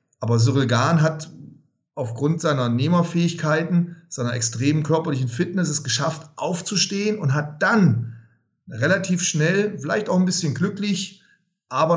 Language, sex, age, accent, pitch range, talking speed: German, male, 40-59, German, 130-170 Hz, 125 wpm